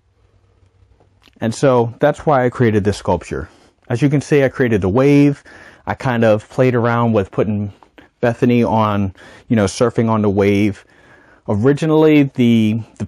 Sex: male